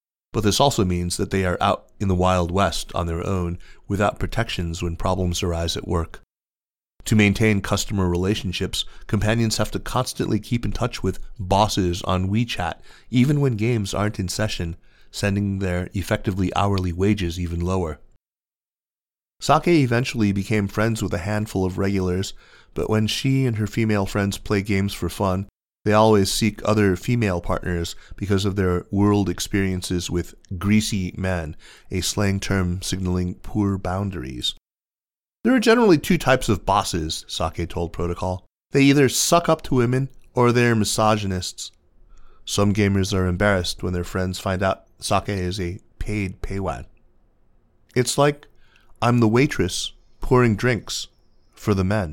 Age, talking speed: 30-49, 155 wpm